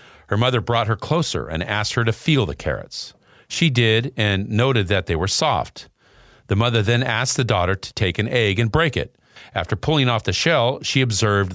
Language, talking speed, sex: English, 210 wpm, male